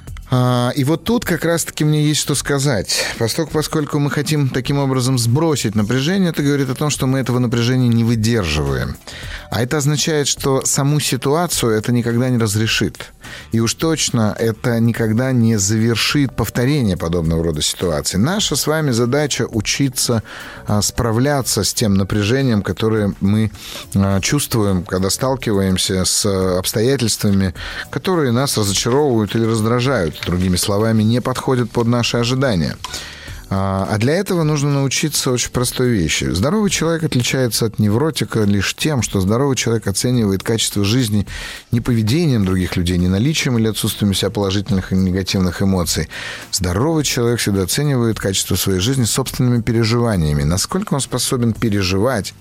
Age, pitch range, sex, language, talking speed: 30-49, 100-135 Hz, male, Russian, 140 wpm